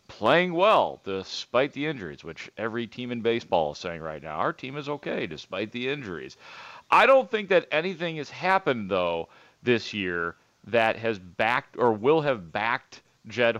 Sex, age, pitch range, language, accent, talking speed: male, 40-59, 105-135 Hz, English, American, 170 wpm